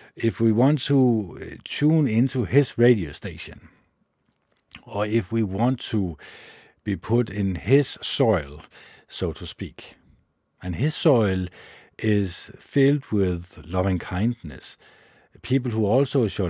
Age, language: 50-69, English